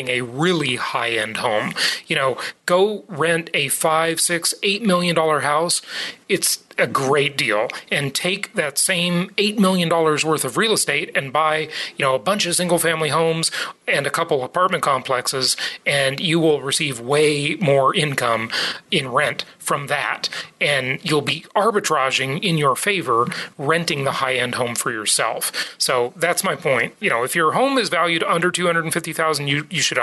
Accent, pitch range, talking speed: American, 145-180 Hz, 170 wpm